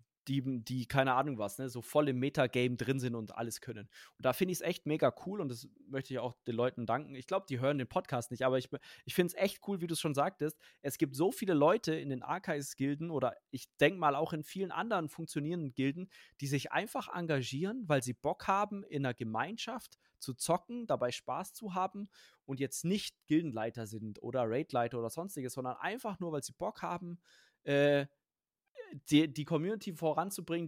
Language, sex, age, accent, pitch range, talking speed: German, male, 20-39, German, 130-175 Hz, 205 wpm